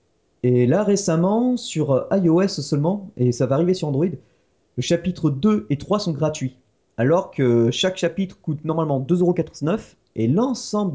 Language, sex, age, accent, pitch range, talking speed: French, male, 30-49, French, 125-170 Hz, 155 wpm